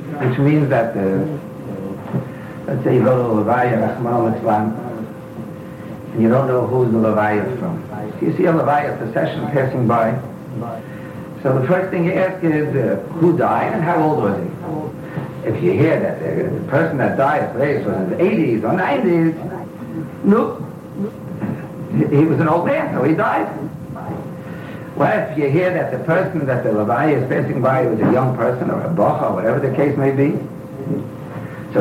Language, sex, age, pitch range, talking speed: English, male, 60-79, 130-170 Hz, 185 wpm